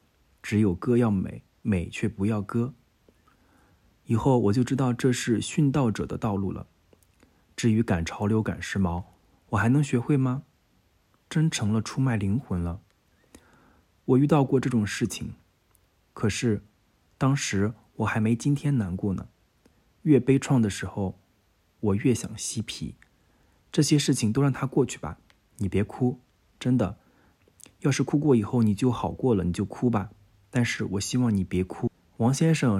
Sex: male